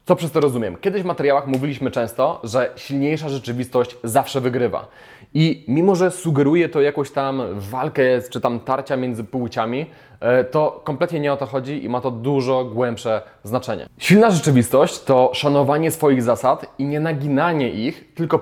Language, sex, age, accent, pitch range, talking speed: Polish, male, 20-39, native, 130-155 Hz, 165 wpm